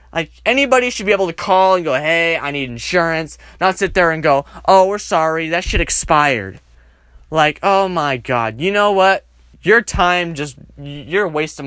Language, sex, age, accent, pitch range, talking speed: English, male, 20-39, American, 110-180 Hz, 195 wpm